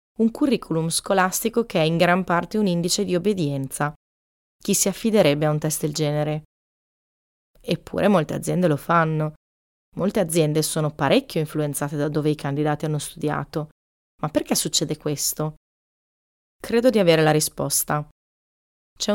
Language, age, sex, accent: Italian, 20-39, female, native